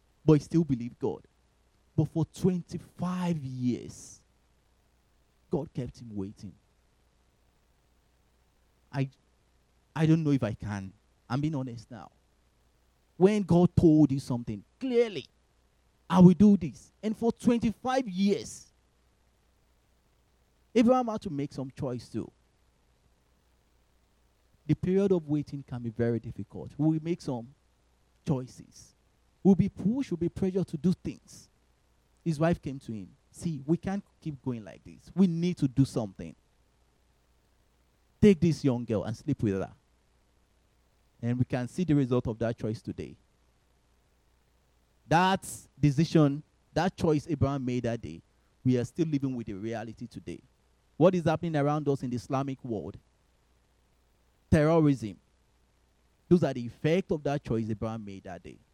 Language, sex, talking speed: English, male, 140 wpm